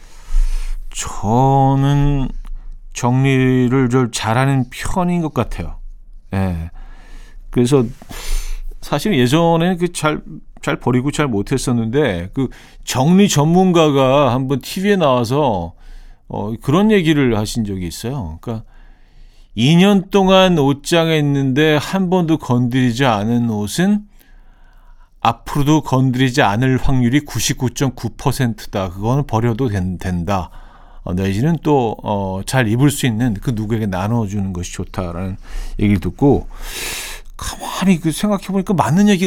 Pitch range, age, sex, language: 105-150 Hz, 40-59, male, Korean